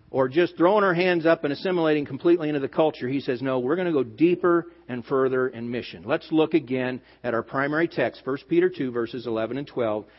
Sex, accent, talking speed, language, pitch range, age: male, American, 225 wpm, English, 130-180 Hz, 50-69